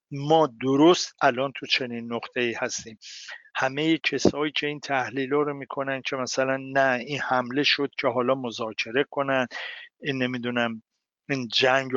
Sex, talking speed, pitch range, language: male, 140 wpm, 120-150 Hz, Persian